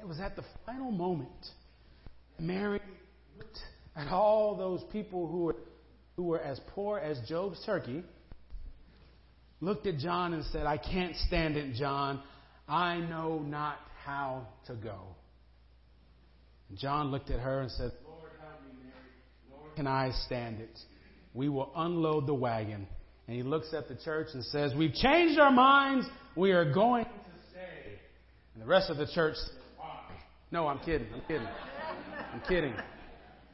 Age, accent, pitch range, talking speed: 40-59, American, 130-185 Hz, 155 wpm